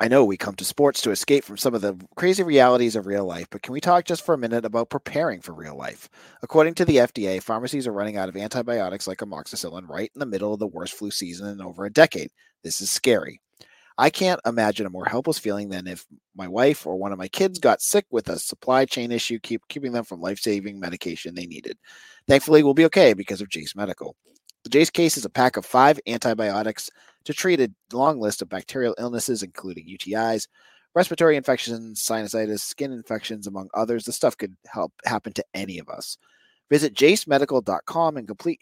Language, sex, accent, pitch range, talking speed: English, male, American, 100-140 Hz, 210 wpm